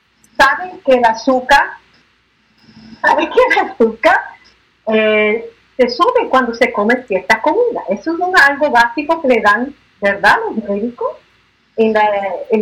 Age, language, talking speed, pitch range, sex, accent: 40-59, Spanish, 145 wpm, 235-345 Hz, female, American